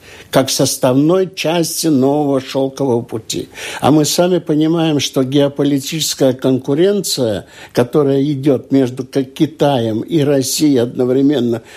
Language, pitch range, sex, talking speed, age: Russian, 130-160 Hz, male, 100 wpm, 60-79